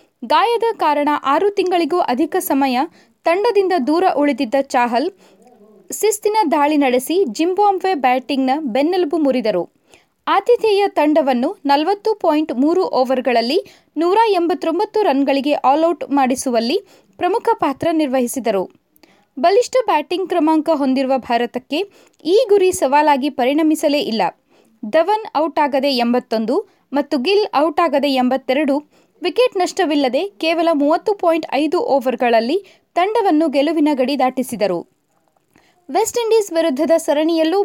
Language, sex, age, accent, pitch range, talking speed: Kannada, female, 20-39, native, 265-360 Hz, 105 wpm